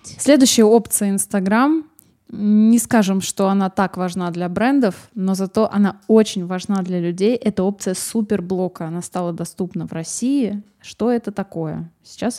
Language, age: Russian, 20-39